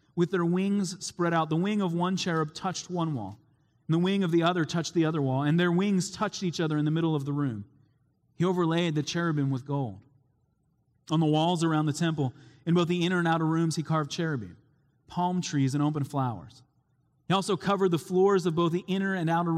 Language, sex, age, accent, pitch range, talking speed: English, male, 30-49, American, 140-175 Hz, 225 wpm